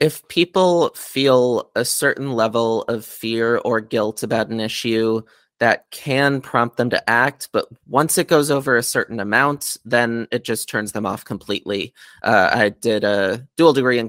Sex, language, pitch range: male, English, 105-130 Hz